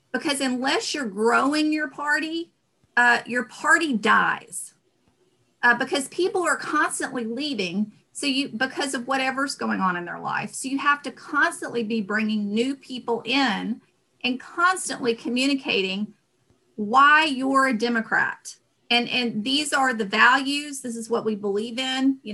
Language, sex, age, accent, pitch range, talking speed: English, female, 40-59, American, 215-270 Hz, 150 wpm